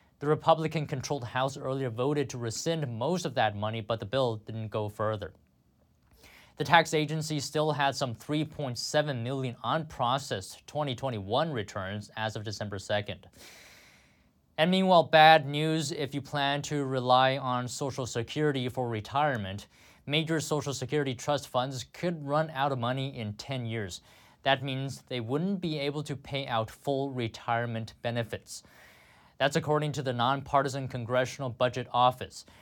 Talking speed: 145 wpm